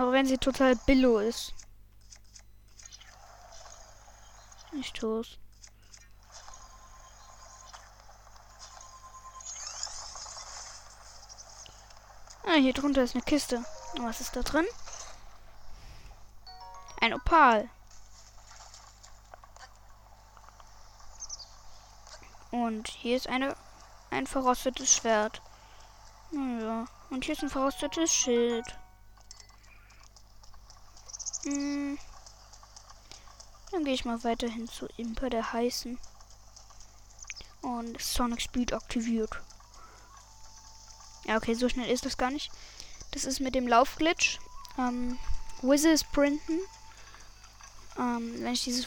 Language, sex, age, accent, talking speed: German, female, 20-39, German, 80 wpm